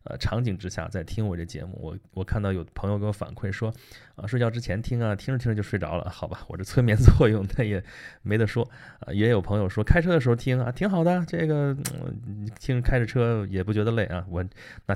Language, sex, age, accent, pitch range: Chinese, male, 20-39, native, 95-120 Hz